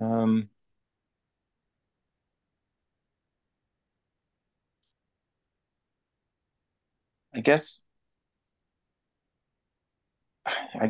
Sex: male